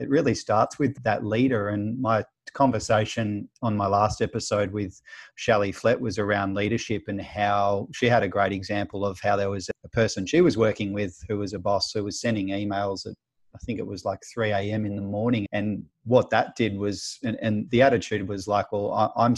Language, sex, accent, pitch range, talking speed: English, male, Australian, 100-115 Hz, 205 wpm